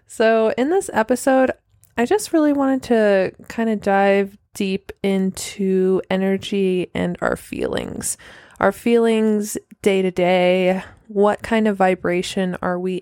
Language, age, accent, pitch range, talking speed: English, 20-39, American, 195-230 Hz, 135 wpm